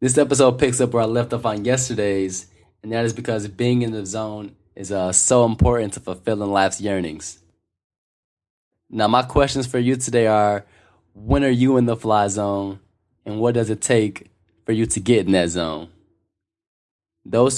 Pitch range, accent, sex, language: 95-120 Hz, American, male, English